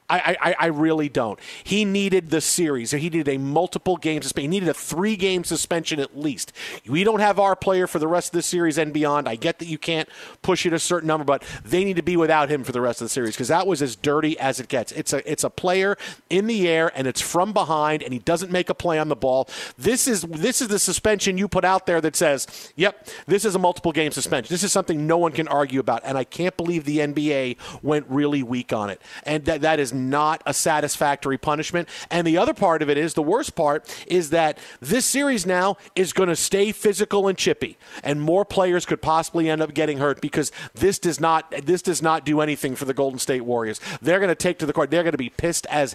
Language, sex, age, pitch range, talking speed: English, male, 40-59, 150-185 Hz, 250 wpm